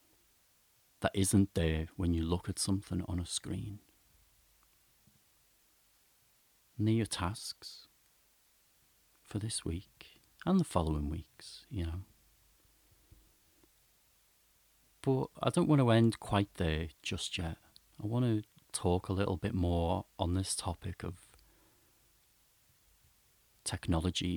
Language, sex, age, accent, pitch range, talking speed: English, male, 40-59, British, 85-105 Hz, 115 wpm